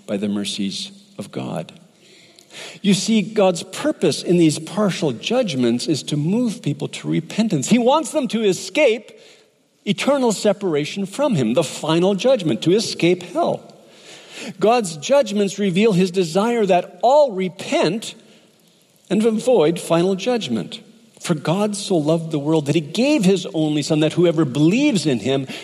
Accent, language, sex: American, English, male